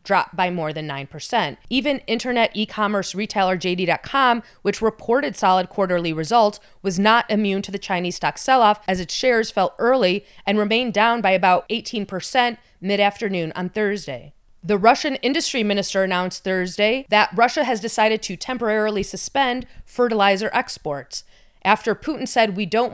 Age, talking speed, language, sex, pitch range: 30-49, 150 wpm, English, female, 185-225 Hz